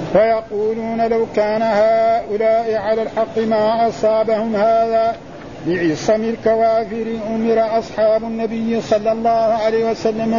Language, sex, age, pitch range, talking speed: Arabic, male, 50-69, 220-230 Hz, 105 wpm